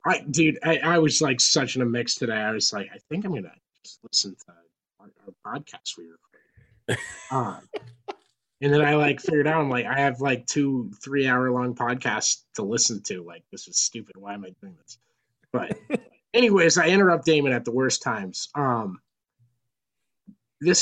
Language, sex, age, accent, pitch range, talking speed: English, male, 20-39, American, 120-150 Hz, 185 wpm